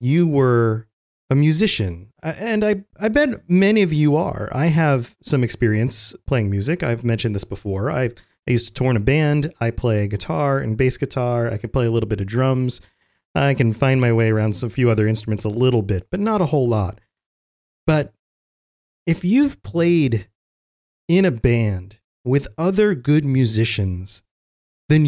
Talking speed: 175 wpm